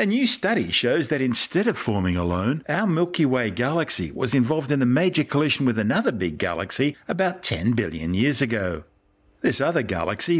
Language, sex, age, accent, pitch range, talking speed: English, male, 50-69, Australian, 100-140 Hz, 180 wpm